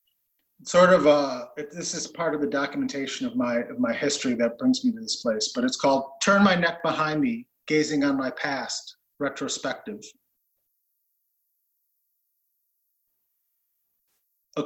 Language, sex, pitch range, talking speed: English, male, 150-190 Hz, 140 wpm